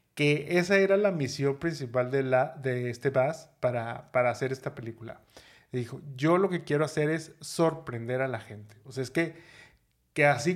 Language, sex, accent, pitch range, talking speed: Spanish, male, Mexican, 125-150 Hz, 195 wpm